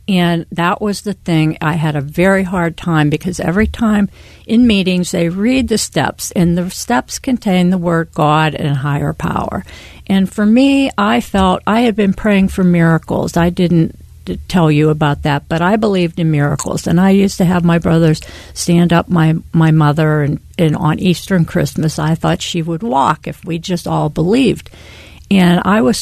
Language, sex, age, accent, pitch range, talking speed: English, female, 50-69, American, 165-220 Hz, 190 wpm